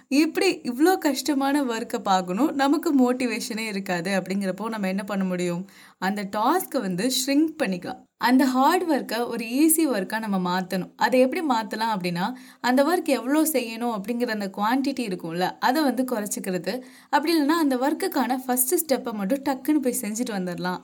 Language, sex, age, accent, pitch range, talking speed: Tamil, female, 20-39, native, 195-265 Hz, 150 wpm